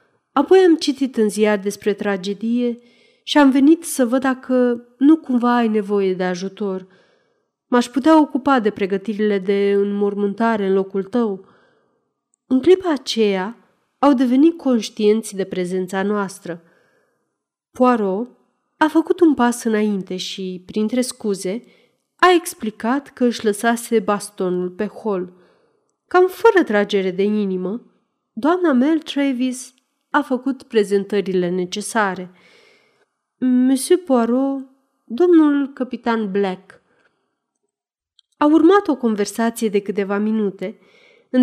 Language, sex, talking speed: Romanian, female, 115 wpm